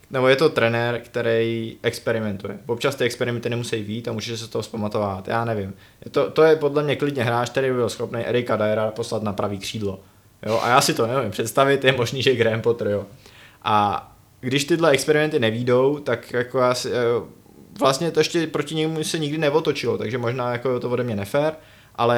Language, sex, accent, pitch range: Czech, male, native, 115-130 Hz